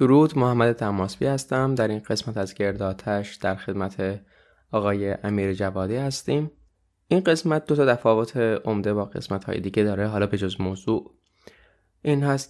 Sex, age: male, 20-39